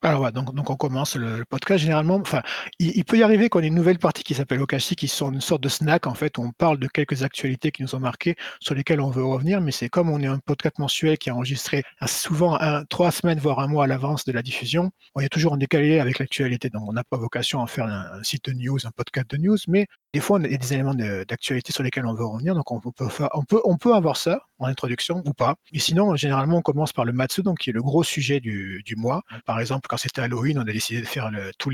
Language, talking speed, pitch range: French, 280 wpm, 120-155 Hz